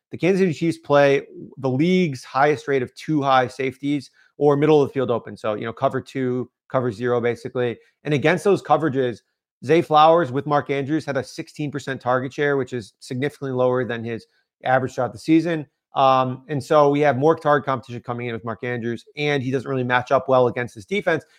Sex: male